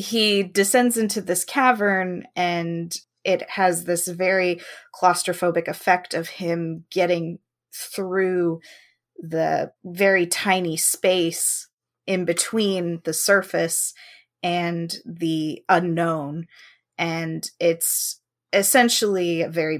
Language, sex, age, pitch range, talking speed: English, female, 20-39, 165-195 Hz, 95 wpm